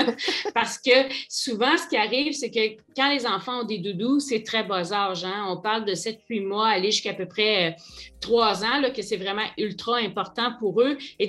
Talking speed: 215 wpm